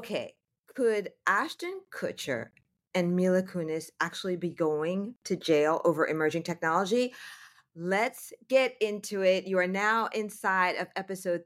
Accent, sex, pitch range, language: American, female, 165-205 Hz, English